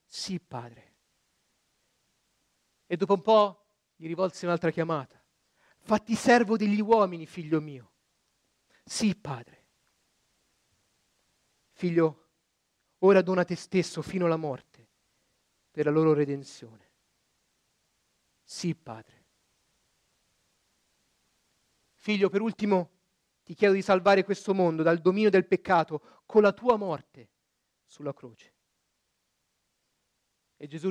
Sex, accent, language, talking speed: male, native, Italian, 105 wpm